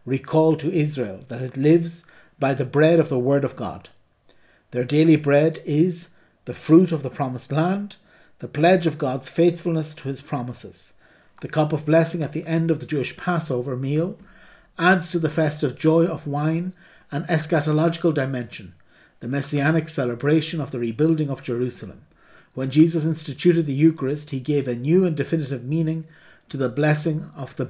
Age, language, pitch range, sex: 60-79, English, 135-165 Hz, male